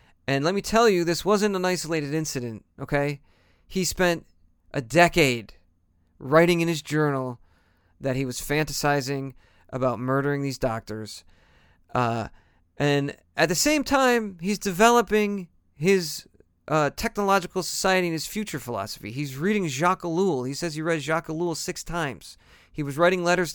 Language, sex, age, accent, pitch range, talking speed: English, male, 40-59, American, 115-175 Hz, 150 wpm